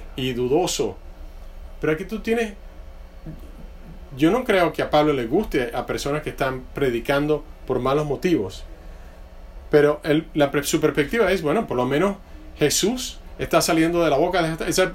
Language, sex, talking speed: English, male, 155 wpm